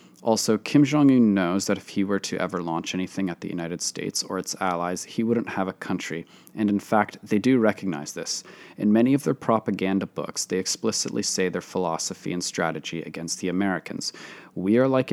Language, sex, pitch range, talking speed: English, male, 85-105 Hz, 200 wpm